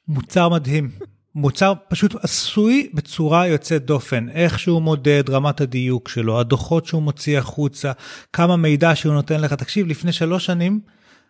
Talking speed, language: 145 wpm, Hebrew